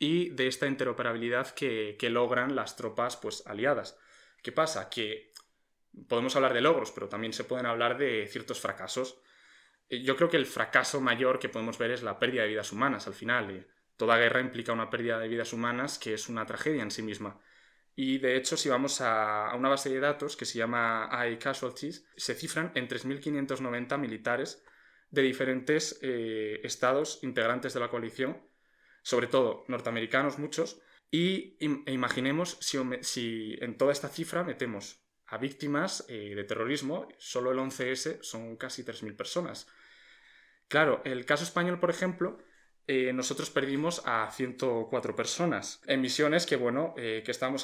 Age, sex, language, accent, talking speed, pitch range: 20-39, male, Spanish, Spanish, 165 wpm, 115-145 Hz